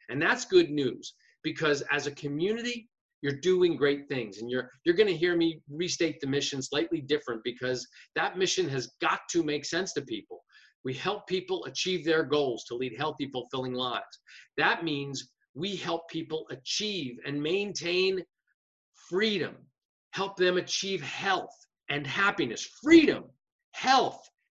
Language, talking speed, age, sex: English, 150 wpm, 40-59, male